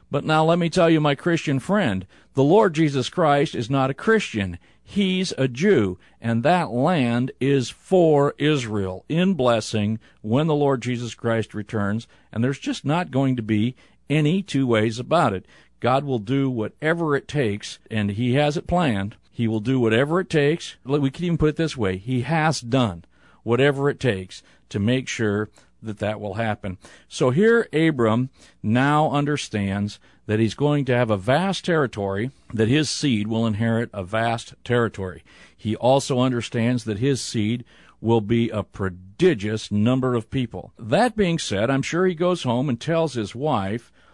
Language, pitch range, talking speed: English, 110-150 Hz, 175 wpm